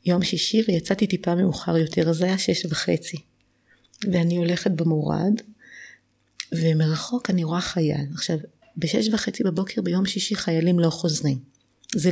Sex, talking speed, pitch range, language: female, 135 wpm, 160-205 Hz, Hebrew